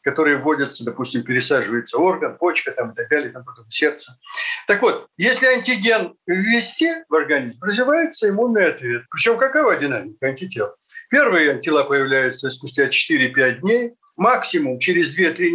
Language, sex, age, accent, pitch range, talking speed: Russian, male, 60-79, native, 175-275 Hz, 140 wpm